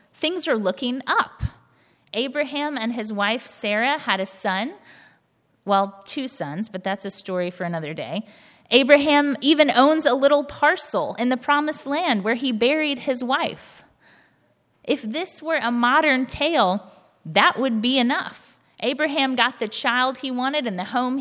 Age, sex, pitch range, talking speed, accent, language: 30-49, female, 215-285 Hz, 160 wpm, American, English